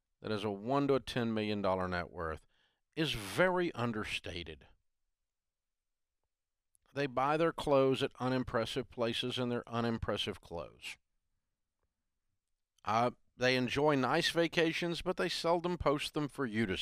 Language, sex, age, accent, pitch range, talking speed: English, male, 50-69, American, 90-140 Hz, 130 wpm